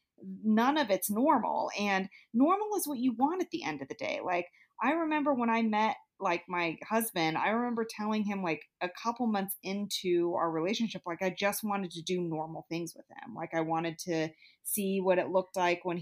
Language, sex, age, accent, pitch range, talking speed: English, female, 30-49, American, 175-230 Hz, 210 wpm